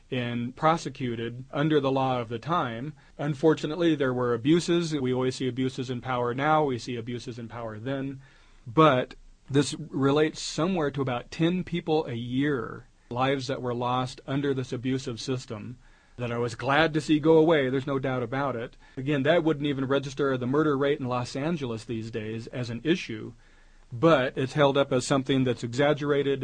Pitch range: 125-145 Hz